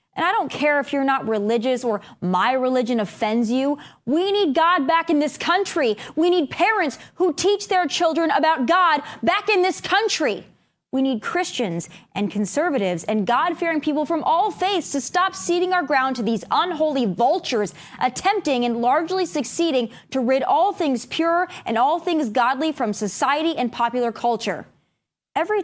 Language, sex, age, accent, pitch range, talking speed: English, female, 20-39, American, 235-350 Hz, 170 wpm